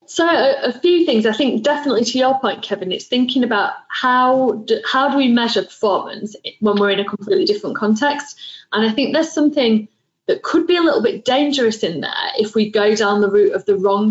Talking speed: 215 wpm